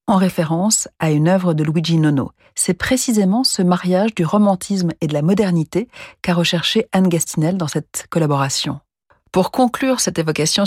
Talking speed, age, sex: 165 wpm, 40-59, female